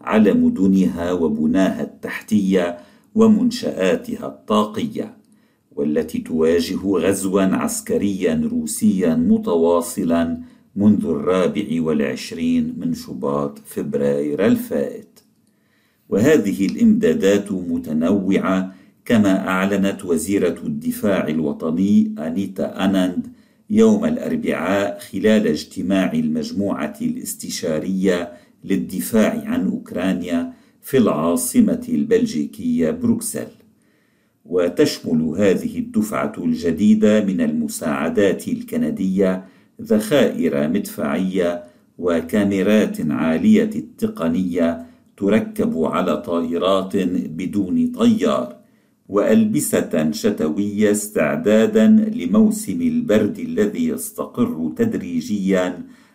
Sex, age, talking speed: male, 50-69, 70 wpm